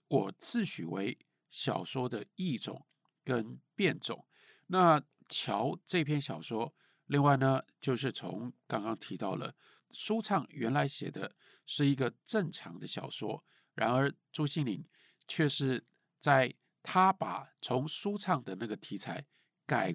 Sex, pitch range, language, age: male, 130-175 Hz, Chinese, 50-69